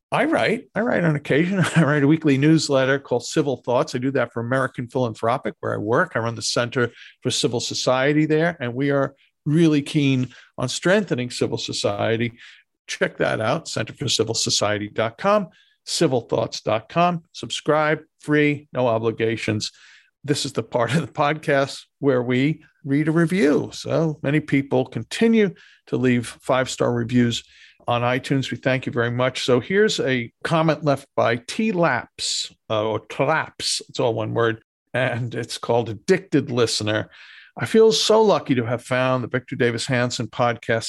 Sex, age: male, 50-69